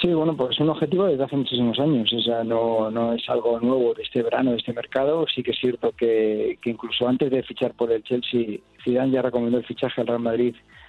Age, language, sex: 40-59, Spanish, male